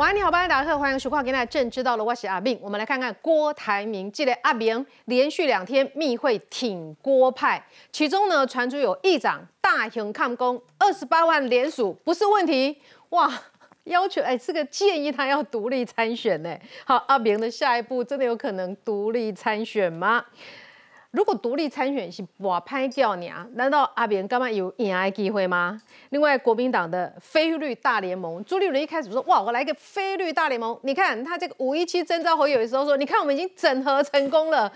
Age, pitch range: 40-59, 220-300 Hz